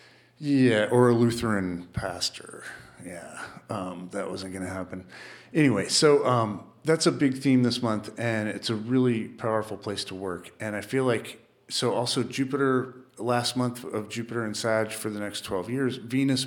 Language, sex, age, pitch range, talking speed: English, male, 40-59, 105-125 Hz, 175 wpm